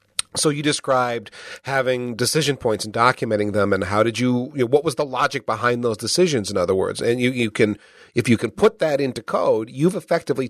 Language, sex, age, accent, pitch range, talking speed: English, male, 40-59, American, 110-150 Hz, 225 wpm